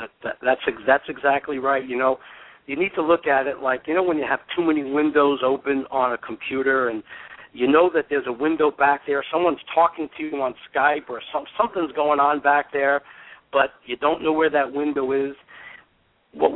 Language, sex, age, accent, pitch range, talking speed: English, male, 60-79, American, 130-155 Hz, 210 wpm